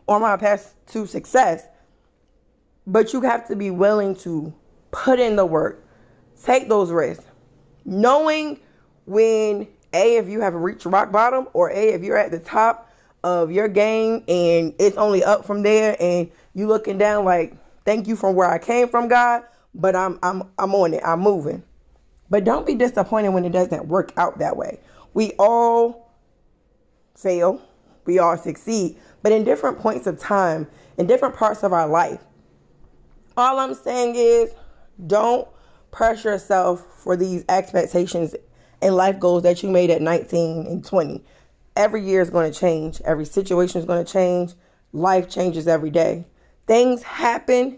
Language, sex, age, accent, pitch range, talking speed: English, female, 20-39, American, 175-220 Hz, 165 wpm